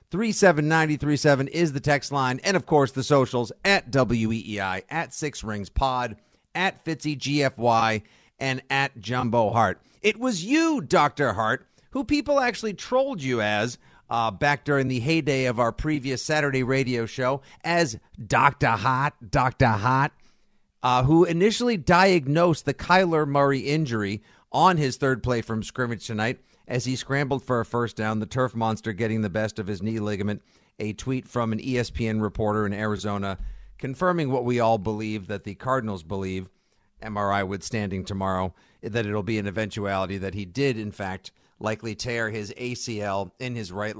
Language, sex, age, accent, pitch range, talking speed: English, male, 50-69, American, 110-145 Hz, 160 wpm